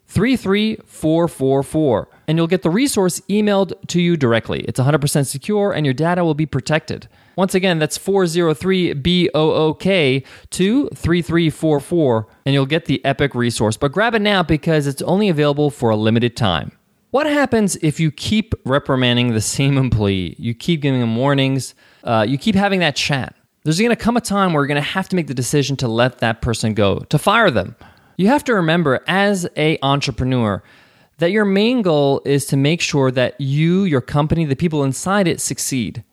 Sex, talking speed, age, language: male, 180 wpm, 20-39, English